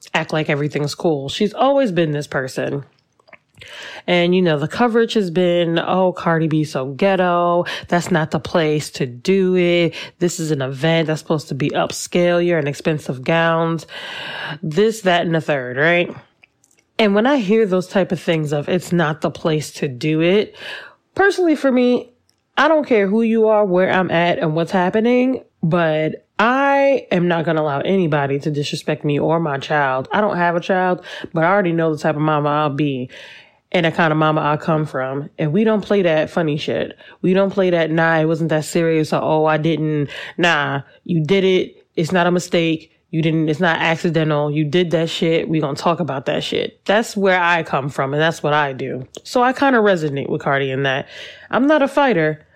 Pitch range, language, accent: 155-185 Hz, English, American